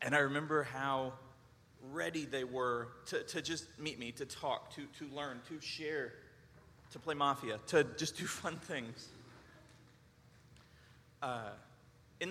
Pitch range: 125-150 Hz